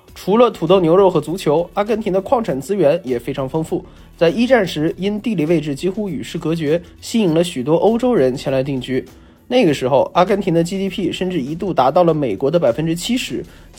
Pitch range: 145-195 Hz